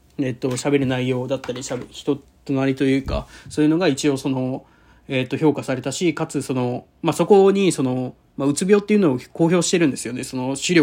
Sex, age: male, 20-39